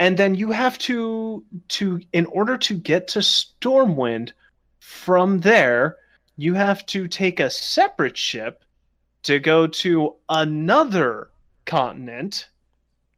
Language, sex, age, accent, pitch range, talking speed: English, male, 30-49, American, 130-200 Hz, 120 wpm